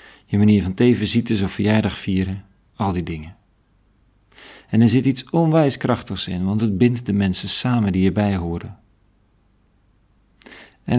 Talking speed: 145 wpm